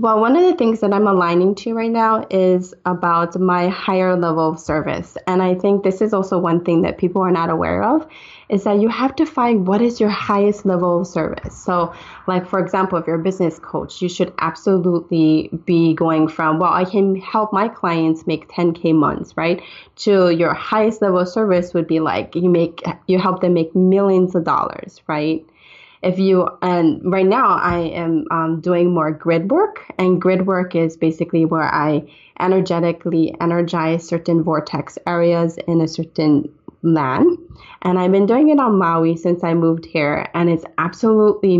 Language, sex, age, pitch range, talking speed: English, female, 20-39, 165-190 Hz, 190 wpm